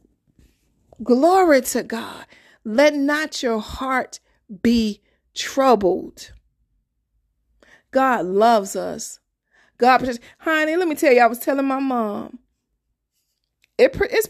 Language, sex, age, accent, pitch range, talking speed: English, female, 40-59, American, 215-270 Hz, 100 wpm